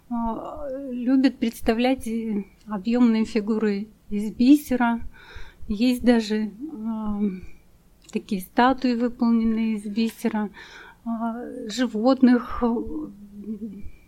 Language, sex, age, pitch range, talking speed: Russian, female, 30-49, 215-250 Hz, 70 wpm